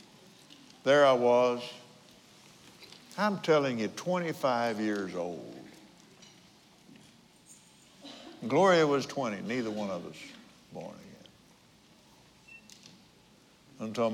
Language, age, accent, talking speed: English, 60-79, American, 80 wpm